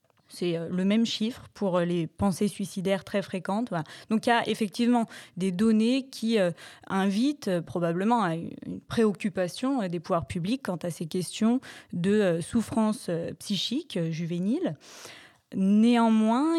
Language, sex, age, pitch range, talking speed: French, female, 20-39, 190-230 Hz, 150 wpm